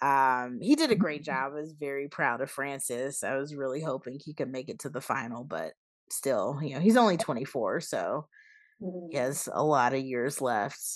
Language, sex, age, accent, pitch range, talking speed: English, female, 20-39, American, 145-215 Hz, 210 wpm